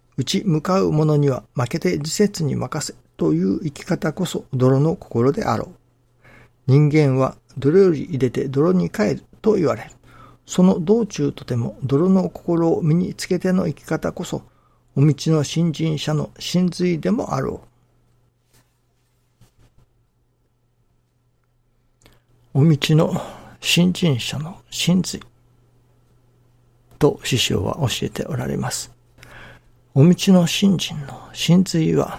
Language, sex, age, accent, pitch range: Japanese, male, 60-79, native, 120-160 Hz